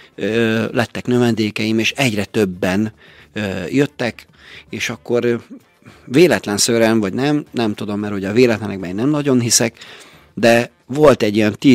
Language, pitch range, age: Hungarian, 105-125 Hz, 50-69